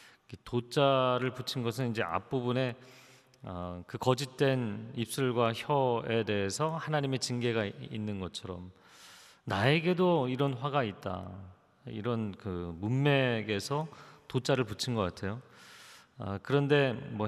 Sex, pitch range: male, 100-135 Hz